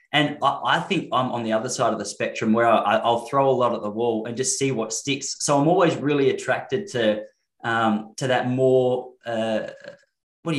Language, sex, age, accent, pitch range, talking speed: English, male, 20-39, Australian, 115-135 Hz, 210 wpm